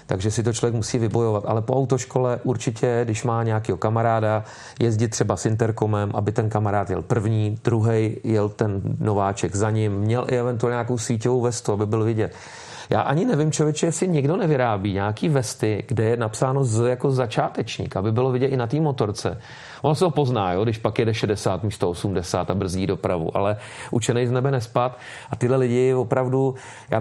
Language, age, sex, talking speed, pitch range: Czech, 40-59, male, 185 wpm, 110-125 Hz